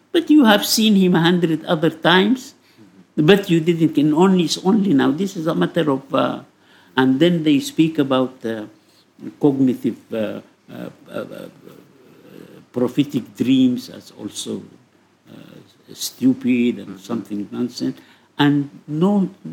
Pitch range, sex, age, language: 120-175 Hz, male, 60-79, English